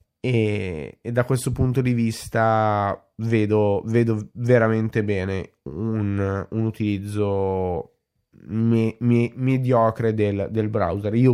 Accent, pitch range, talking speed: native, 100-120 Hz, 110 wpm